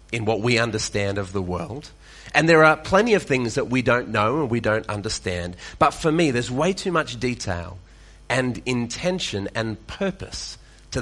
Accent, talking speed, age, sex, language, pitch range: Australian, 185 wpm, 30-49, male, English, 105-150 Hz